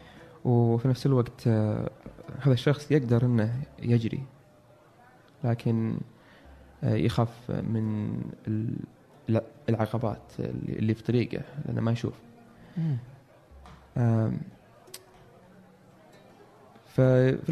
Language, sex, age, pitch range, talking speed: Arabic, male, 20-39, 115-135 Hz, 70 wpm